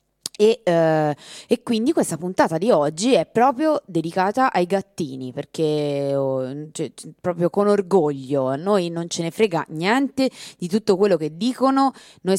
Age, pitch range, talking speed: 20-39, 155-195 Hz, 155 wpm